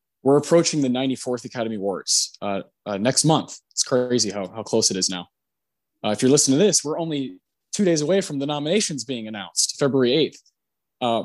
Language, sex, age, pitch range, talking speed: English, male, 20-39, 125-165 Hz, 195 wpm